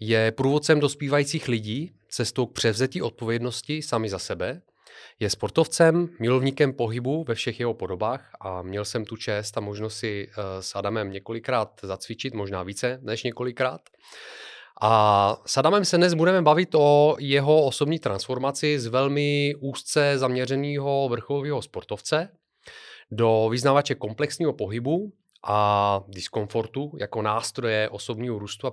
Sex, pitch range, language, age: male, 110-140 Hz, Czech, 30-49